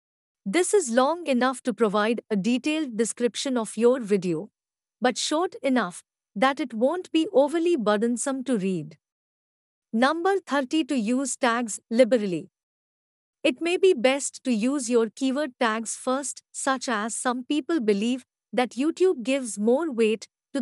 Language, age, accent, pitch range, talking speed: Hindi, 50-69, native, 215-285 Hz, 145 wpm